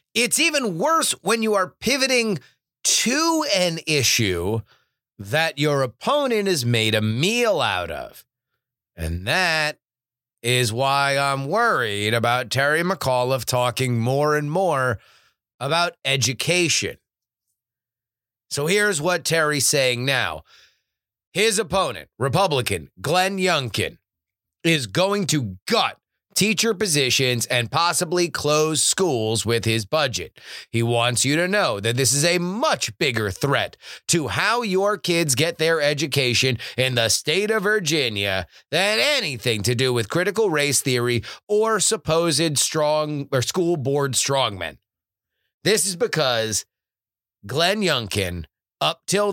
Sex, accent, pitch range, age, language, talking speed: male, American, 120-190 Hz, 30-49, English, 125 wpm